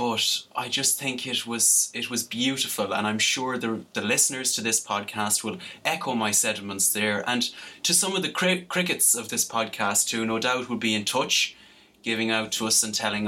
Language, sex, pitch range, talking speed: English, male, 105-125 Hz, 210 wpm